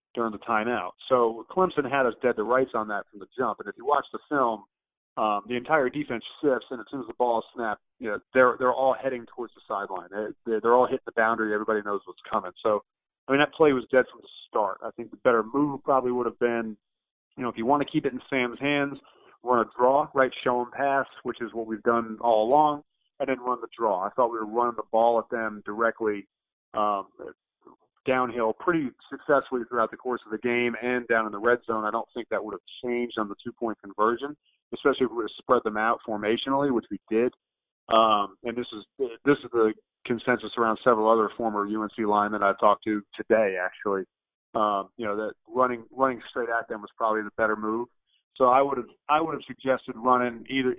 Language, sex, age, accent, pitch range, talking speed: English, male, 30-49, American, 110-130 Hz, 235 wpm